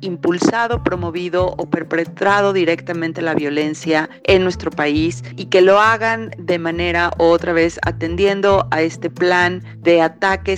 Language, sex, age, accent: Spanish, female, 40-59, Mexican